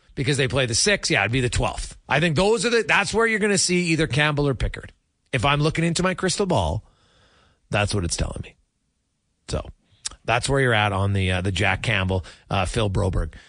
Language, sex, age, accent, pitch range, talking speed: English, male, 40-59, American, 120-180 Hz, 220 wpm